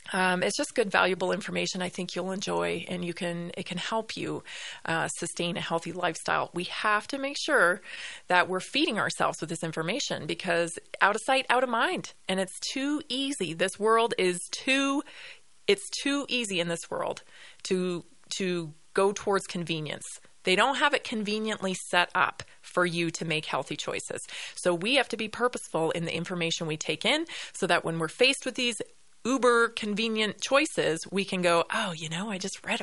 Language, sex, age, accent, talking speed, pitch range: English, female, 30-49, American, 190 wpm, 175-240 Hz